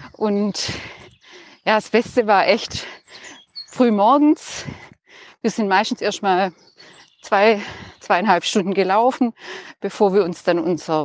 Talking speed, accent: 120 wpm, German